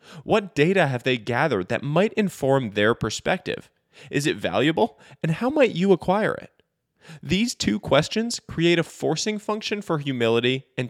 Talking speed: 160 wpm